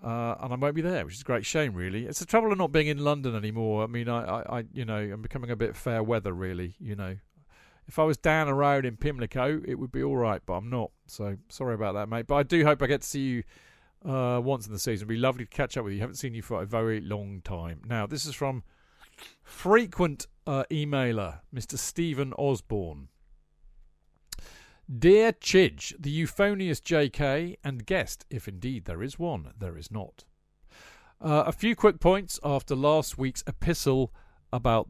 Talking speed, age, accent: 215 wpm, 40-59, British